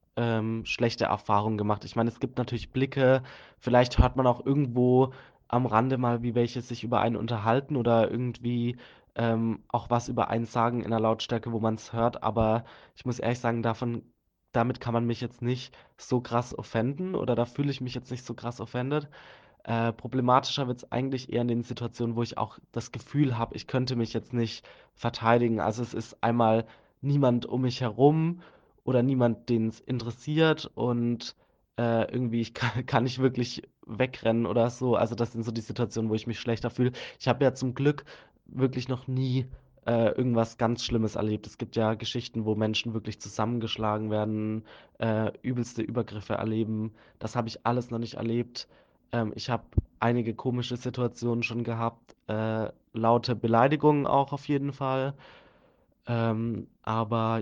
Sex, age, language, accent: male, 20-39, German, German